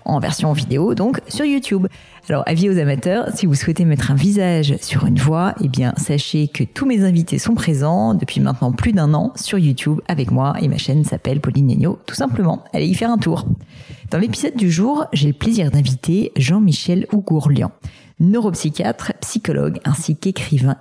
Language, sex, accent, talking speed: French, female, French, 185 wpm